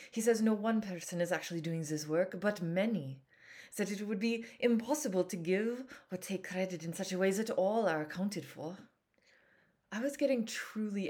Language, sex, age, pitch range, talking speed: English, female, 20-39, 165-215 Hz, 195 wpm